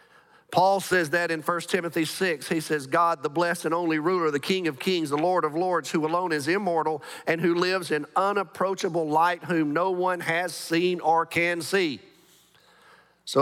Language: English